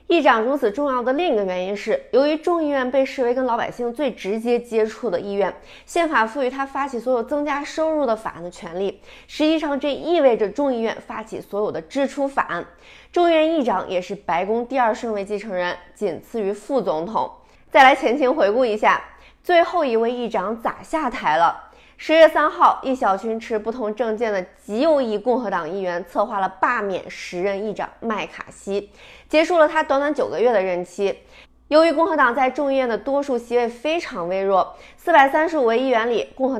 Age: 20-39